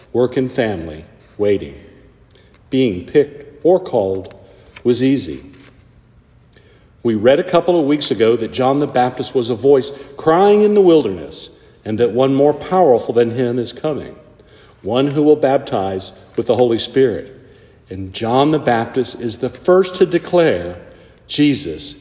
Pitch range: 115-145 Hz